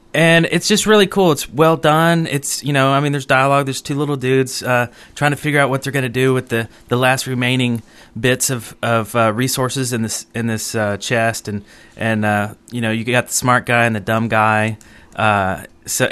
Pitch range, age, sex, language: 110-140 Hz, 30-49, male, English